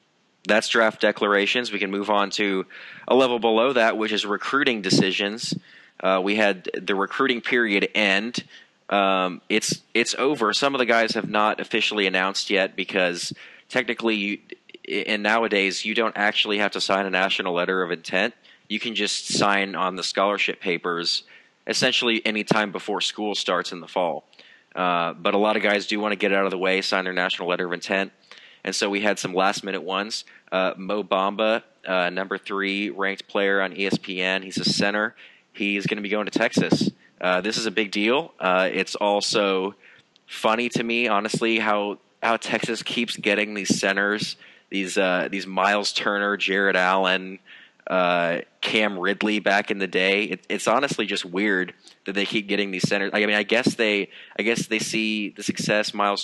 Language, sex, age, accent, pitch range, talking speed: English, male, 30-49, American, 95-110 Hz, 185 wpm